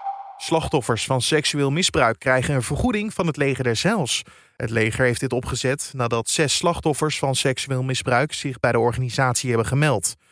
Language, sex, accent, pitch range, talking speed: Dutch, male, Dutch, 125-160 Hz, 170 wpm